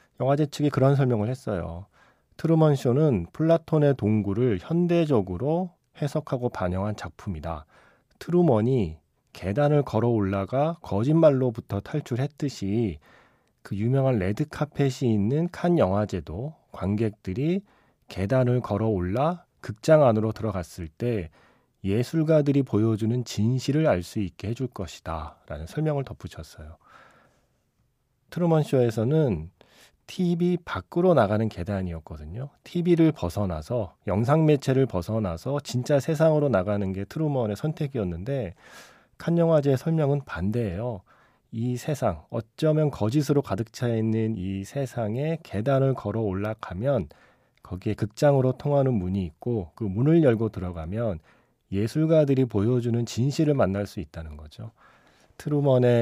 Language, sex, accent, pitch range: Korean, male, native, 100-145 Hz